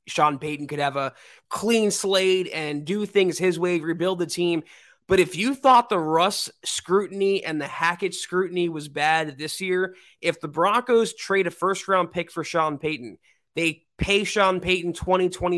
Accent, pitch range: American, 165-200 Hz